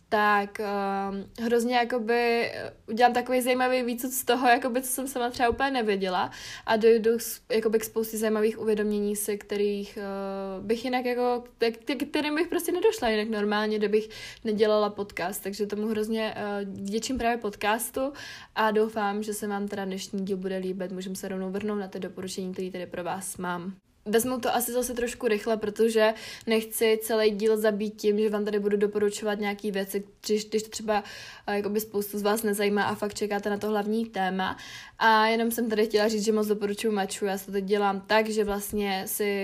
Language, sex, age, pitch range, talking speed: Czech, female, 20-39, 200-230 Hz, 175 wpm